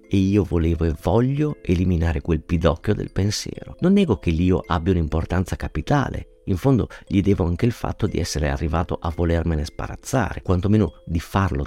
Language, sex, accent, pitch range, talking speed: Italian, male, native, 85-120 Hz, 170 wpm